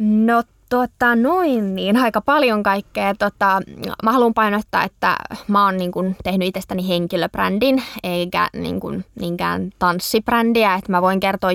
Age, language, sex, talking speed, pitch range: 20-39, Finnish, female, 135 wpm, 180-225 Hz